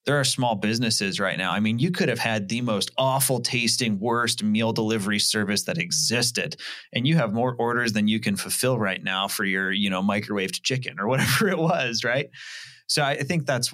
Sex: male